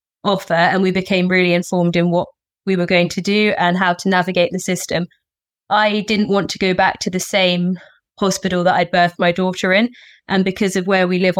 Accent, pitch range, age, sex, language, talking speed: British, 175-195 Hz, 20-39, female, English, 215 wpm